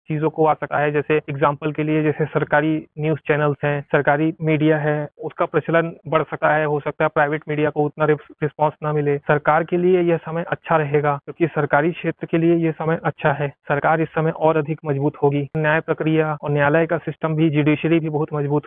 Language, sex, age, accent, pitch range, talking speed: Hindi, male, 30-49, native, 150-165 Hz, 215 wpm